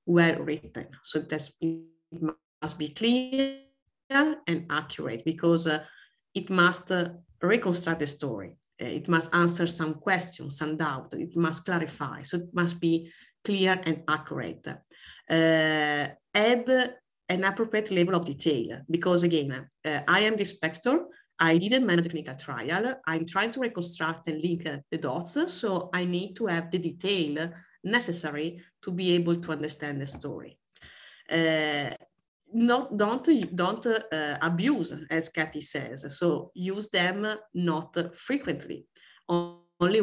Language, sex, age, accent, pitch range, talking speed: English, female, 30-49, Italian, 155-195 Hz, 140 wpm